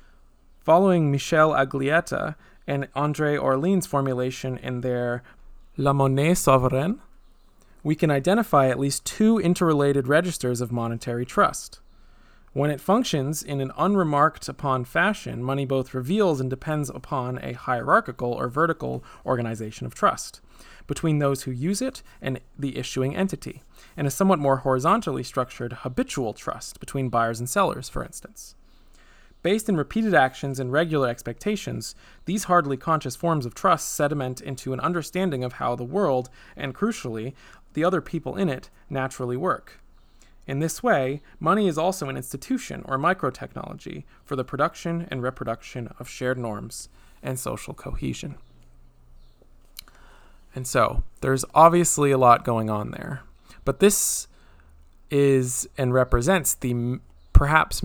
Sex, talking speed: male, 135 wpm